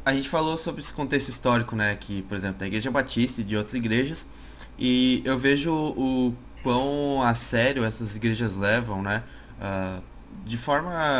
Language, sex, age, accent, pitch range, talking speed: Portuguese, male, 20-39, Brazilian, 110-145 Hz, 165 wpm